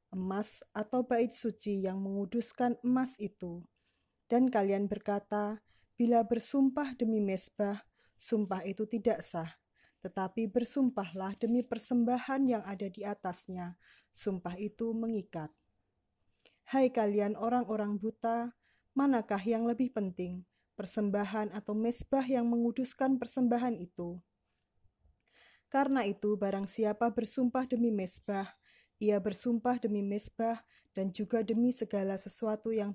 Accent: native